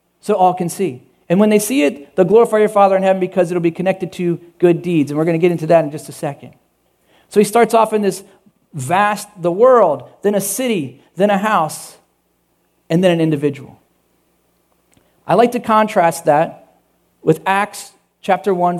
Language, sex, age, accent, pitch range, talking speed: English, male, 40-59, American, 185-215 Hz, 195 wpm